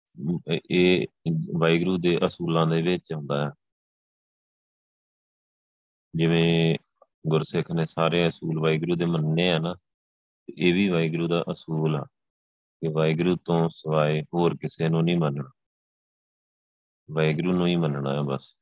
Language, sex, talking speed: Punjabi, male, 125 wpm